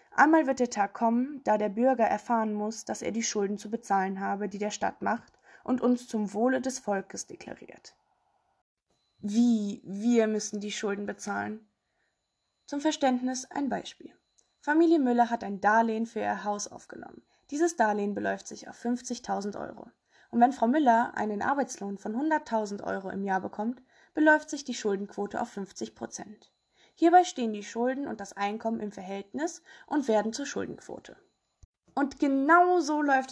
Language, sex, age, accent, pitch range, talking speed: German, female, 20-39, German, 210-270 Hz, 160 wpm